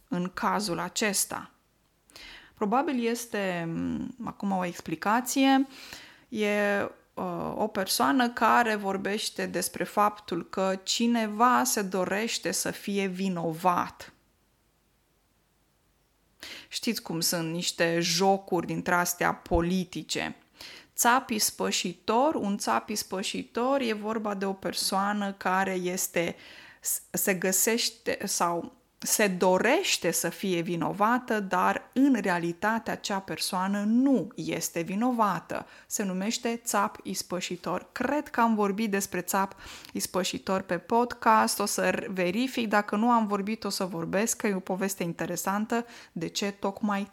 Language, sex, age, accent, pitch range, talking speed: Romanian, female, 20-39, native, 180-230 Hz, 110 wpm